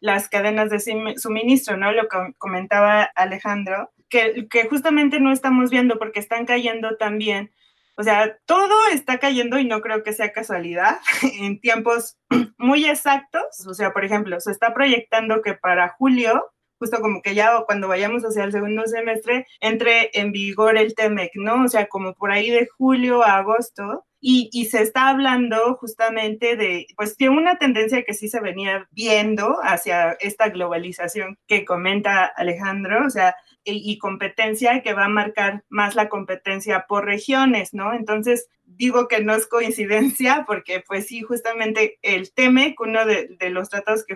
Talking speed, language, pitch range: 170 wpm, Spanish, 200-235 Hz